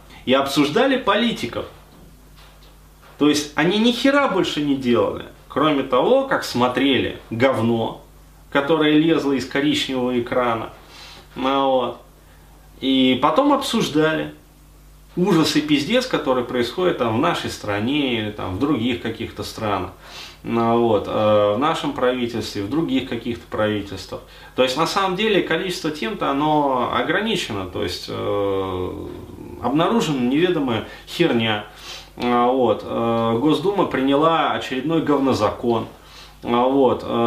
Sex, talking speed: male, 115 wpm